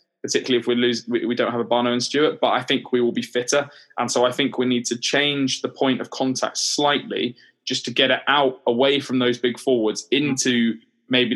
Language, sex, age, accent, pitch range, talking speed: English, male, 20-39, British, 115-125 Hz, 225 wpm